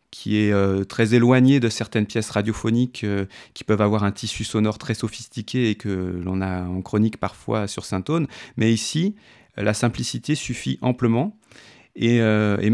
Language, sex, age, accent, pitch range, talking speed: French, male, 30-49, French, 110-135 Hz, 170 wpm